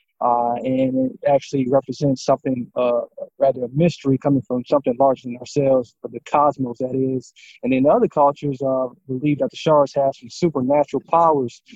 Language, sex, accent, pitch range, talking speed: English, male, American, 130-160 Hz, 170 wpm